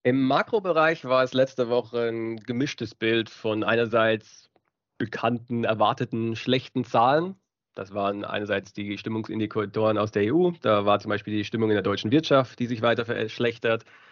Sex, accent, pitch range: male, German, 105-125 Hz